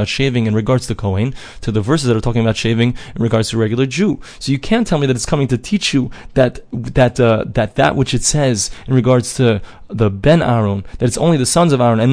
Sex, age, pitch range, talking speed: male, 20-39, 110-135 Hz, 250 wpm